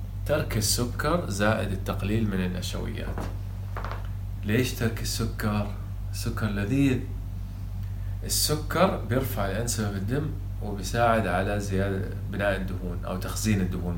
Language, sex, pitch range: Arabic, male, 95-105 Hz